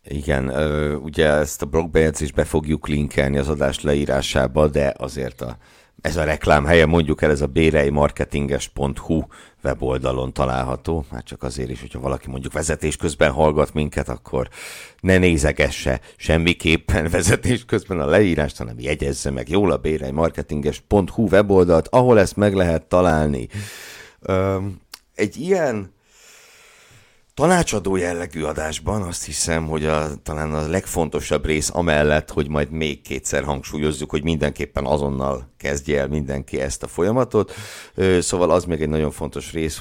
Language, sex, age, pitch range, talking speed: Hungarian, male, 60-79, 70-85 Hz, 135 wpm